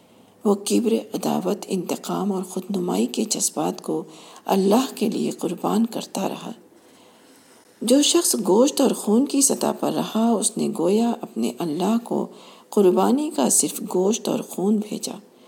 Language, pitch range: Urdu, 200-245 Hz